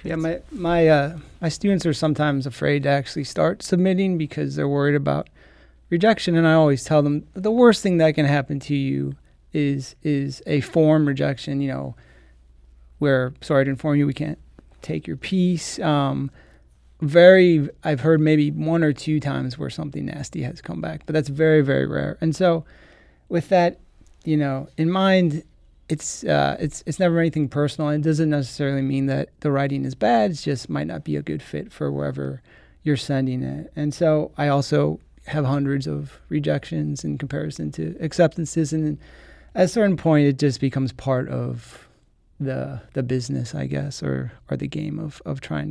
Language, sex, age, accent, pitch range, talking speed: English, male, 30-49, American, 125-160 Hz, 180 wpm